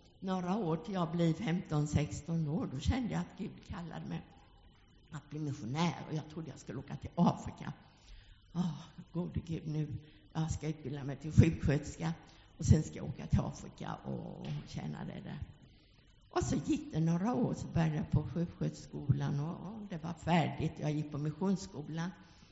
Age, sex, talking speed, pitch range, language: 60-79, female, 170 wpm, 125-170 Hz, English